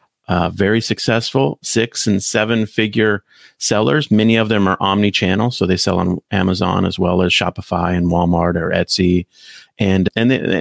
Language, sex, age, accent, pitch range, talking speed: English, male, 40-59, American, 95-115 Hz, 165 wpm